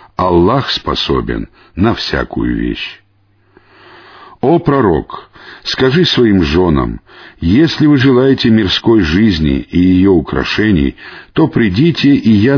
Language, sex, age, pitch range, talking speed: Russian, male, 60-79, 90-130 Hz, 105 wpm